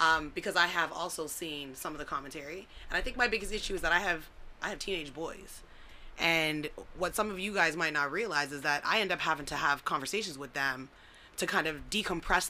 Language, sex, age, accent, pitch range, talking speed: English, female, 20-39, American, 155-195 Hz, 230 wpm